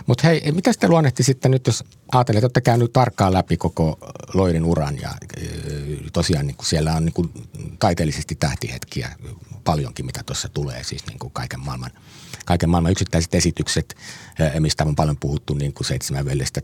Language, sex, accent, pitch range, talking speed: Finnish, male, native, 75-100 Hz, 160 wpm